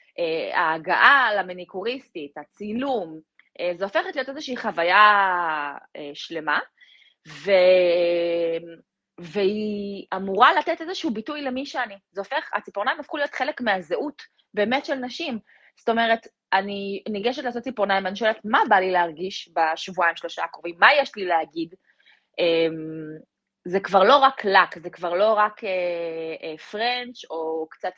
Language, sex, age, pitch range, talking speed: Hebrew, female, 20-39, 170-235 Hz, 130 wpm